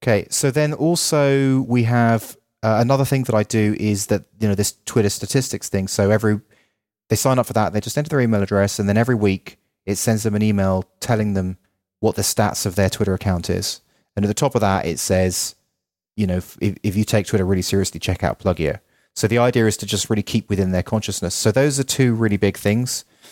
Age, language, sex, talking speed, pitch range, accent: 30-49, English, male, 235 wpm, 95-115 Hz, British